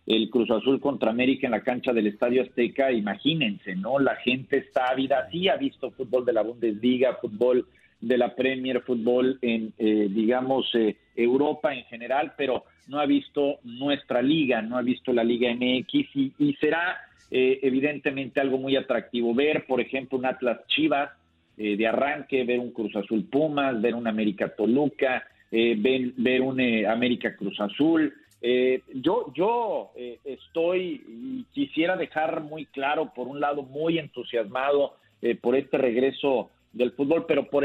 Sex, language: male, Spanish